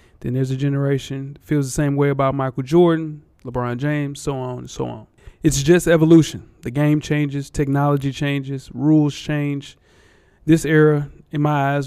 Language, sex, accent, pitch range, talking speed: English, male, American, 135-150 Hz, 170 wpm